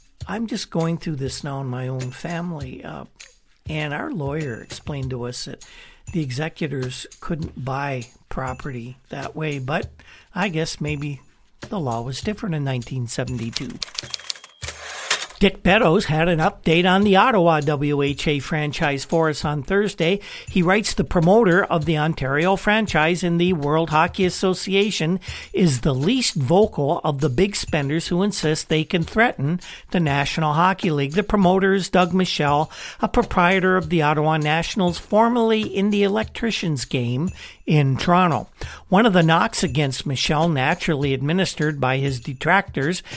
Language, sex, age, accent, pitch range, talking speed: English, male, 50-69, American, 145-190 Hz, 150 wpm